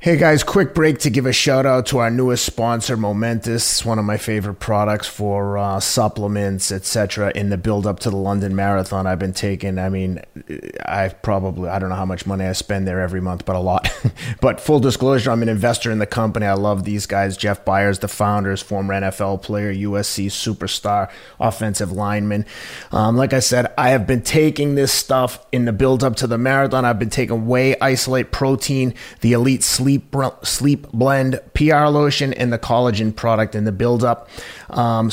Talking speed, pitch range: 195 wpm, 105-130 Hz